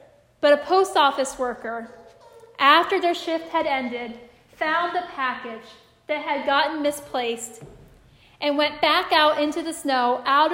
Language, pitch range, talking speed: English, 265-330 Hz, 140 wpm